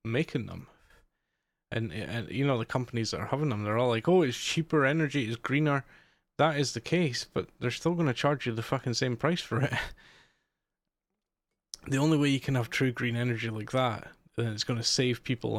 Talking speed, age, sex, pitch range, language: 205 wpm, 20-39, male, 105-125 Hz, English